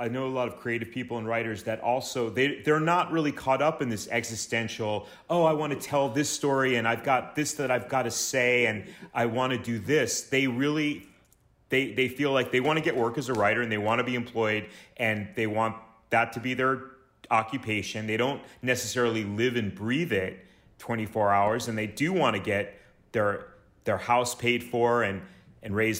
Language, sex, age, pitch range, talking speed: English, male, 30-49, 110-130 Hz, 215 wpm